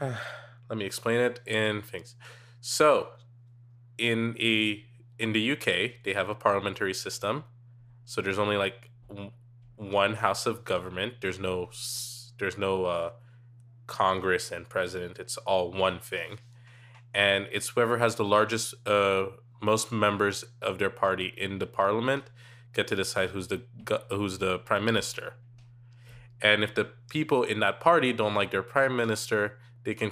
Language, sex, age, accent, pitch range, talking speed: English, male, 20-39, American, 100-120 Hz, 150 wpm